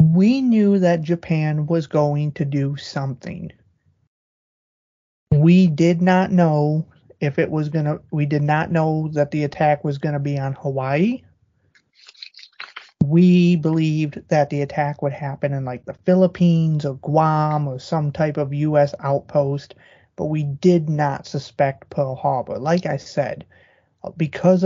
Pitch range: 145-175 Hz